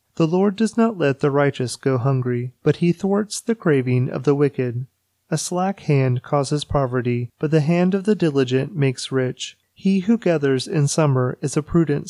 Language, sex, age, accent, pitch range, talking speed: English, male, 30-49, American, 130-170 Hz, 190 wpm